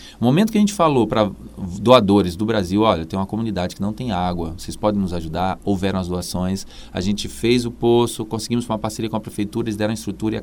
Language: Portuguese